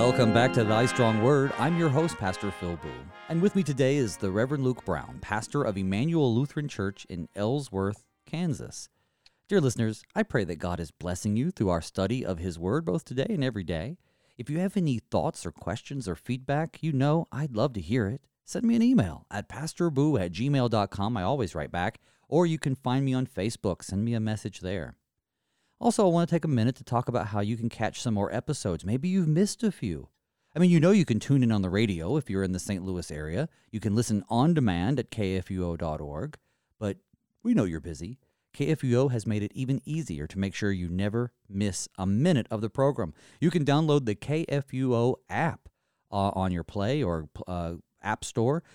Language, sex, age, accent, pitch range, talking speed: English, male, 30-49, American, 95-145 Hz, 210 wpm